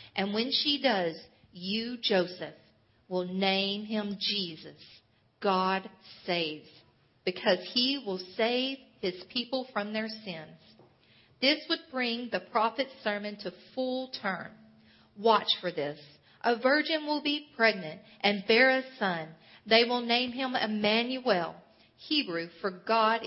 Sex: female